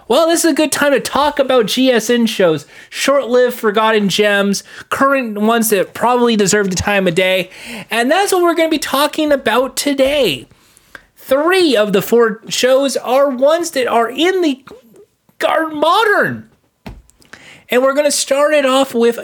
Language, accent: English, American